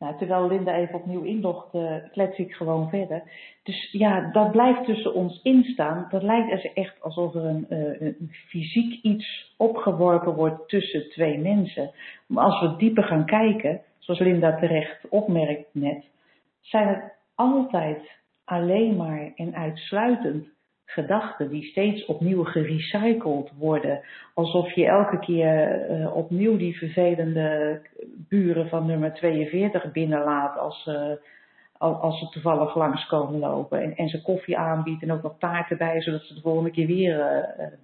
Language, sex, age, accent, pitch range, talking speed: Dutch, female, 50-69, Dutch, 155-205 Hz, 145 wpm